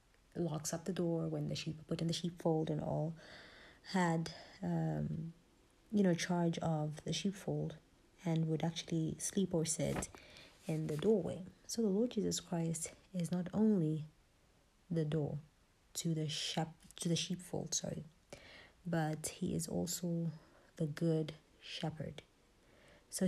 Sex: female